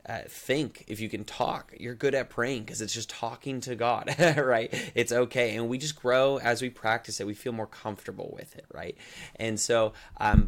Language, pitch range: English, 105-120 Hz